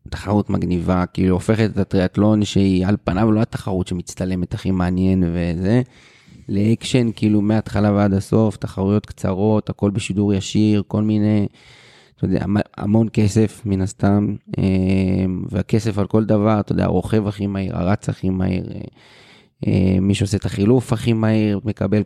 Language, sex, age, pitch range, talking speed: Hebrew, male, 30-49, 95-110 Hz, 140 wpm